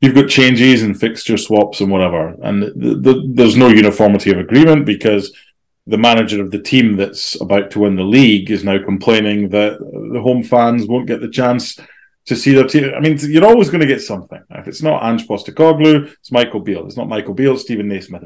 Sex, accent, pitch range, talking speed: male, British, 100-145 Hz, 220 wpm